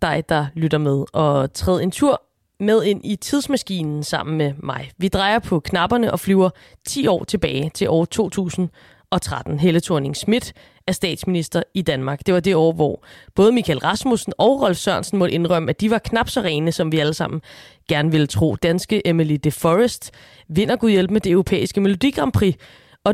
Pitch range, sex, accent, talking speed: 160-205 Hz, female, native, 185 wpm